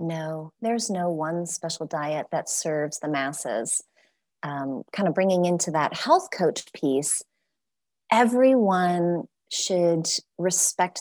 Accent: American